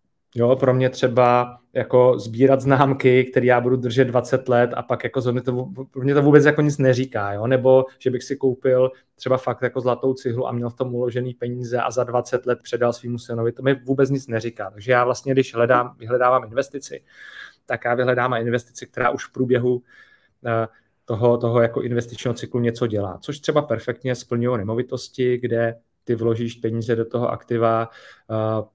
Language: Czech